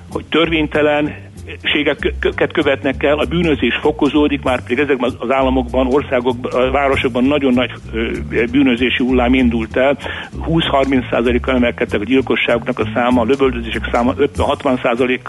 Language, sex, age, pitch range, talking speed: Hungarian, male, 60-79, 125-155 Hz, 120 wpm